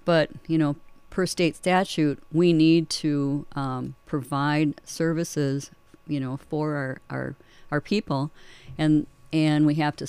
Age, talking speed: 50-69, 145 wpm